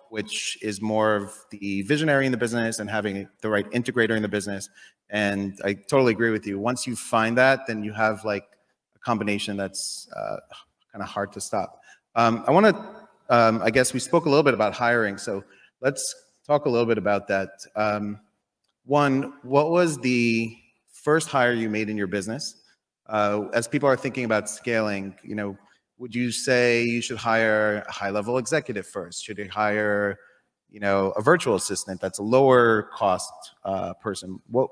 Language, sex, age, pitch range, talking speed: English, male, 30-49, 100-120 Hz, 185 wpm